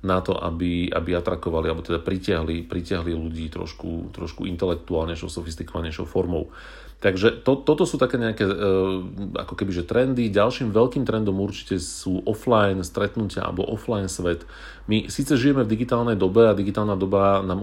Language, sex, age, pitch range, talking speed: Slovak, male, 40-59, 90-110 Hz, 155 wpm